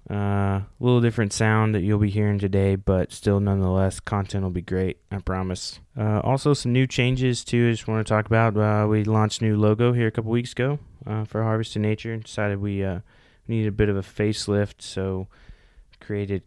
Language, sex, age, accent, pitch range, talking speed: English, male, 20-39, American, 95-105 Hz, 210 wpm